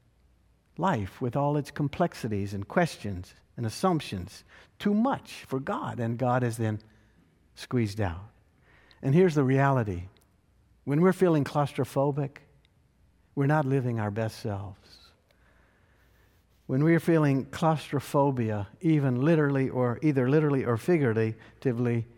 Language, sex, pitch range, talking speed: English, male, 115-145 Hz, 120 wpm